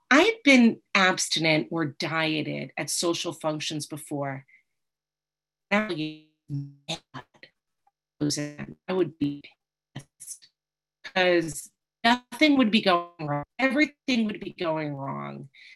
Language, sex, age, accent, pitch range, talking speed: English, female, 40-59, American, 145-180 Hz, 95 wpm